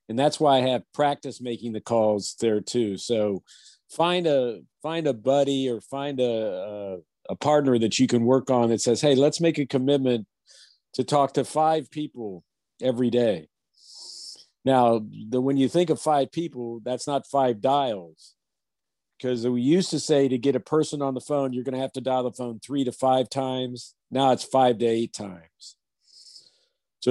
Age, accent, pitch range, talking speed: 50-69, American, 115-135 Hz, 190 wpm